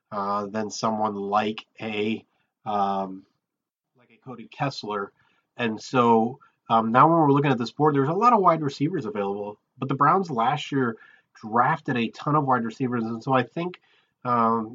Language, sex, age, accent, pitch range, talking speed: English, male, 30-49, American, 110-140 Hz, 175 wpm